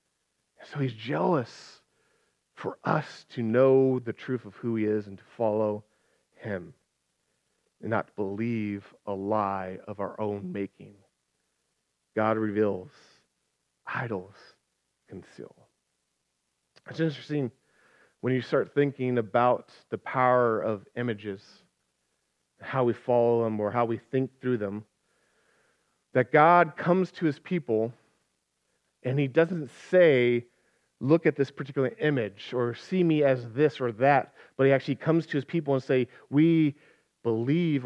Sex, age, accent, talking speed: male, 40-59, American, 135 wpm